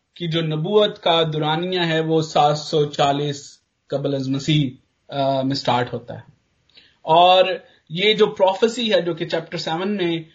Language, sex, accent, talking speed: English, male, Indian, 145 wpm